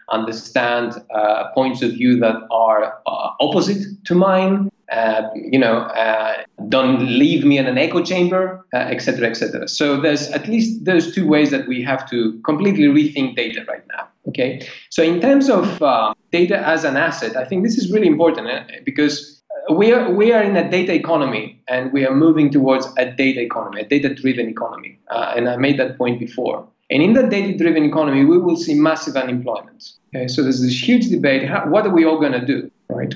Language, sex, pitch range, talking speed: Greek, male, 125-180 Hz, 205 wpm